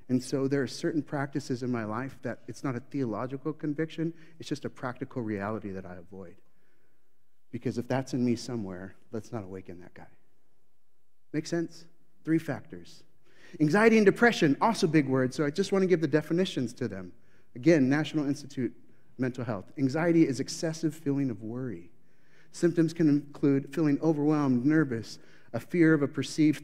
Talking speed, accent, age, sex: 175 wpm, American, 30-49, male